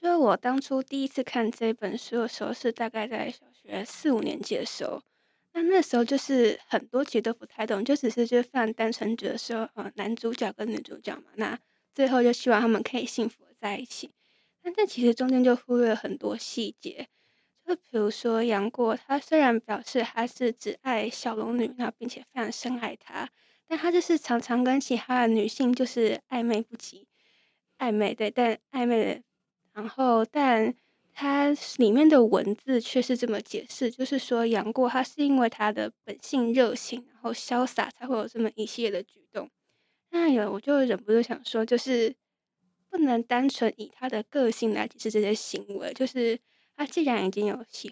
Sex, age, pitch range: female, 20-39, 225-260 Hz